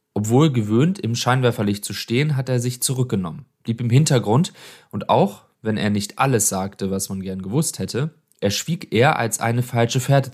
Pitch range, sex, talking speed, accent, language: 105-135 Hz, male, 180 wpm, German, German